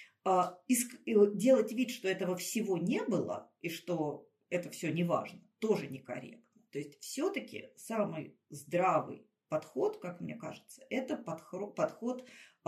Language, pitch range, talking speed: Russian, 180-235 Hz, 120 wpm